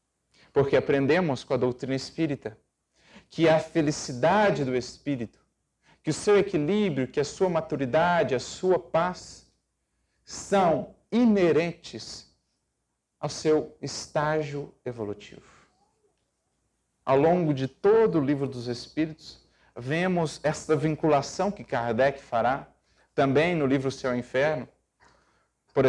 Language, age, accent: Portuguese, 40-59, Brazilian